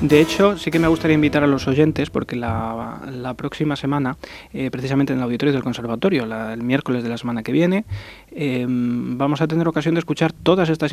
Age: 20-39